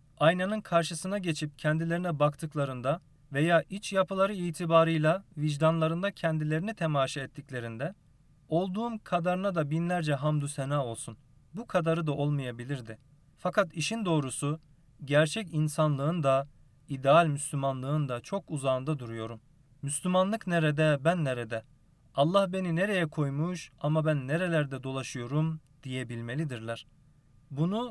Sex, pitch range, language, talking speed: male, 135-165 Hz, Turkish, 110 wpm